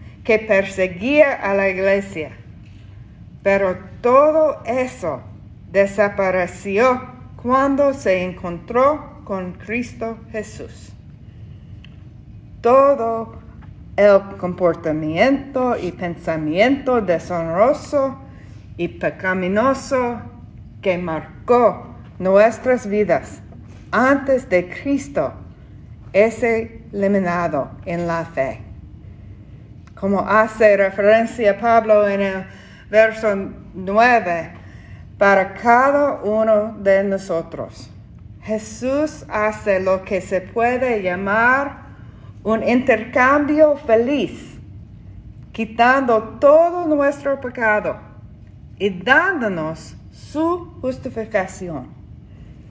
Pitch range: 180-250 Hz